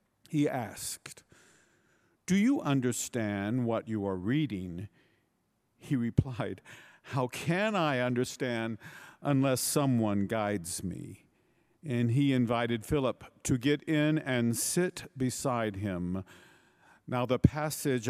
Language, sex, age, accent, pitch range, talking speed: English, male, 50-69, American, 115-150 Hz, 110 wpm